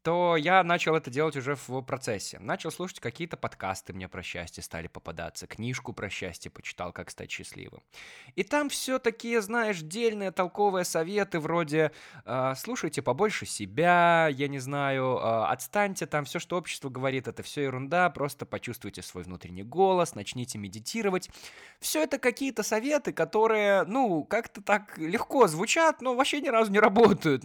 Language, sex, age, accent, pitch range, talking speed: Russian, male, 20-39, native, 115-180 Hz, 155 wpm